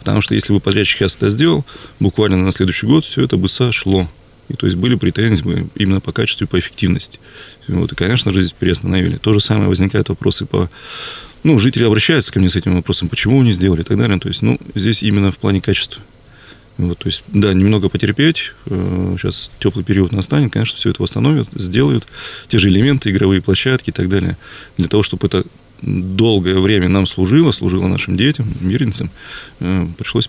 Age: 30-49